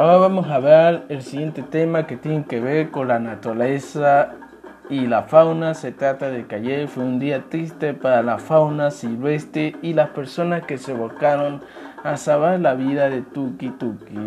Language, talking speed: Spanish, 180 wpm